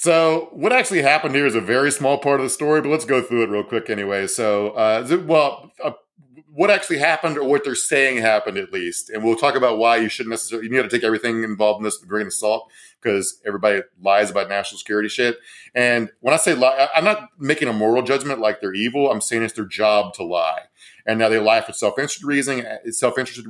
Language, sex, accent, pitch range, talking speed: English, male, American, 105-130 Hz, 235 wpm